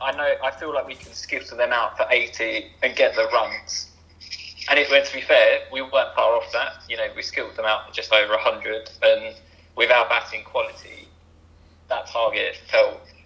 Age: 20-39